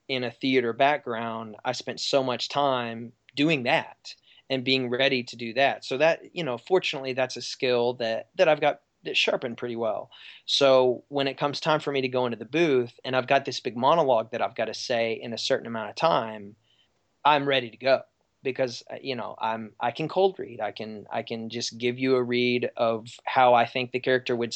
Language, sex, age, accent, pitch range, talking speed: English, male, 20-39, American, 120-140 Hz, 220 wpm